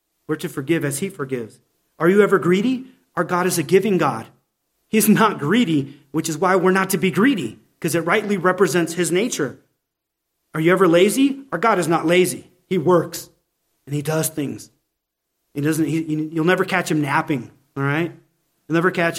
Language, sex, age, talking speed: English, male, 40-59, 190 wpm